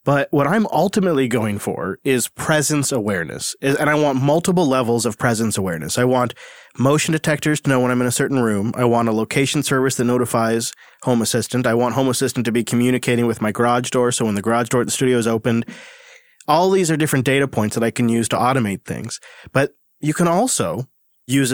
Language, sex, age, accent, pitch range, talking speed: English, male, 30-49, American, 120-145 Hz, 215 wpm